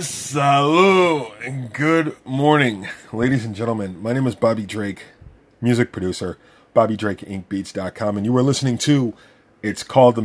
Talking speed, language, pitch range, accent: 150 wpm, English, 90-120 Hz, American